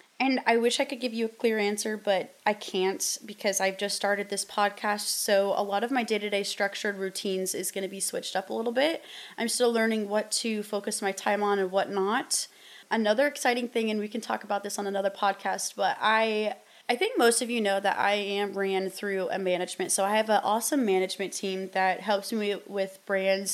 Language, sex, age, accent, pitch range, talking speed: English, female, 20-39, American, 195-235 Hz, 215 wpm